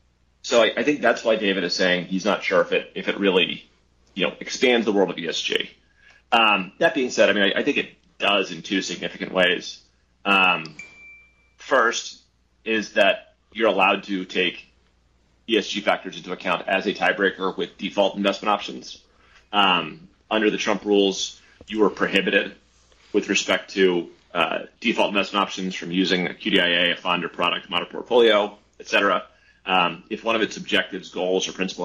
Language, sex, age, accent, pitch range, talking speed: English, male, 30-49, American, 85-110 Hz, 175 wpm